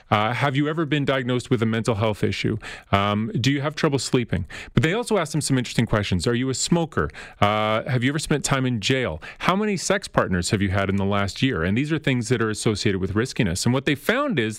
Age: 30-49